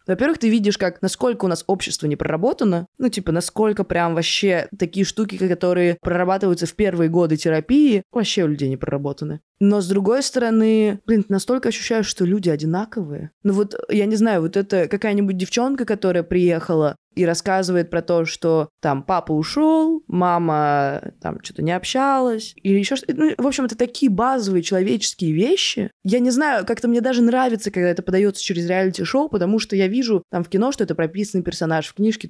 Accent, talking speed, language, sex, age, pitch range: native, 185 wpm, Russian, female, 20-39, 165-210 Hz